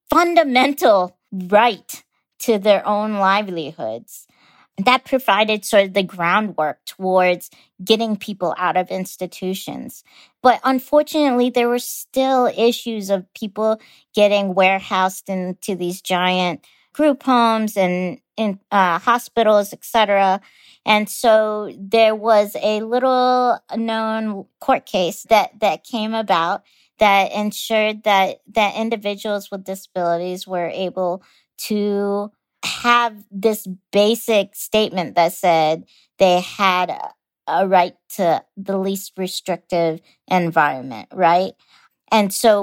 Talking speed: 115 wpm